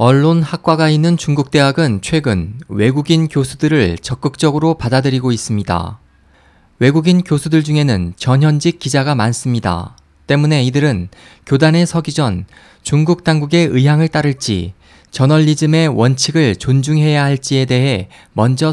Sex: male